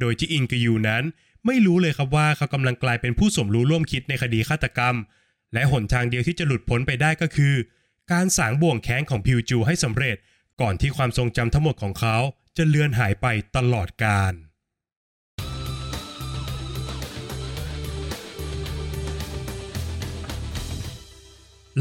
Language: Thai